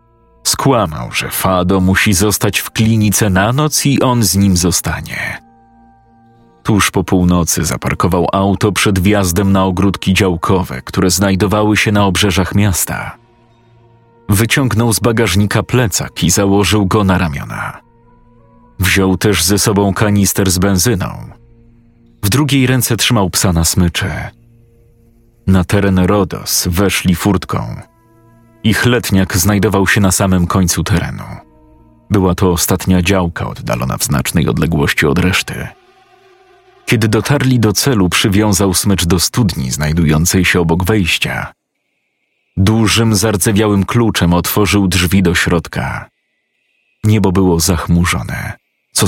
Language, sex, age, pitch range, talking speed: Polish, male, 40-59, 95-115 Hz, 120 wpm